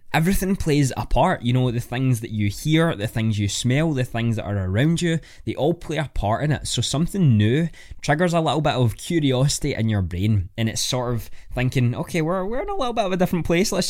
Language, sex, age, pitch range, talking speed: English, male, 10-29, 105-140 Hz, 245 wpm